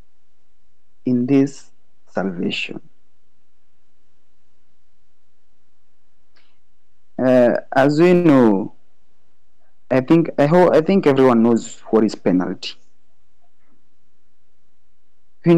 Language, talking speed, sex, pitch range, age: English, 75 wpm, male, 110-165 Hz, 50-69